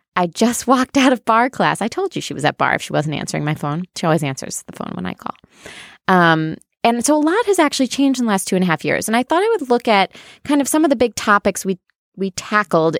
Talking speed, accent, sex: 280 wpm, American, female